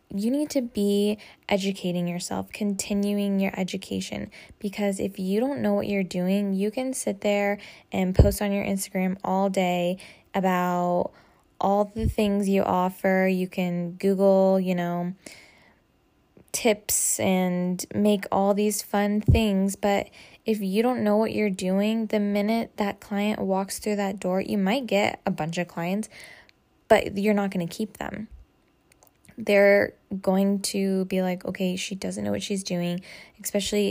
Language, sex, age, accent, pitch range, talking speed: English, female, 10-29, American, 185-205 Hz, 160 wpm